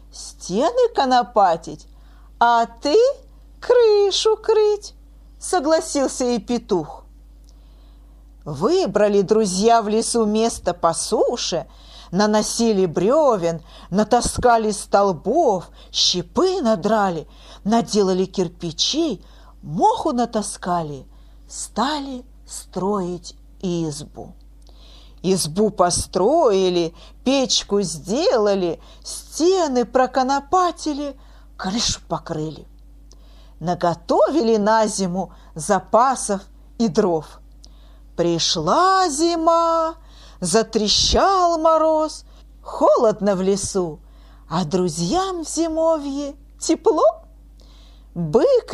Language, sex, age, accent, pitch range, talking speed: Russian, female, 40-59, native, 185-300 Hz, 70 wpm